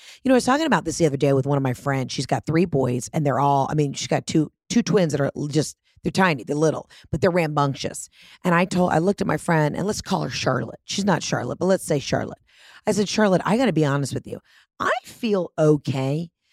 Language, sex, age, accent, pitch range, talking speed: English, female, 40-59, American, 145-200 Hz, 260 wpm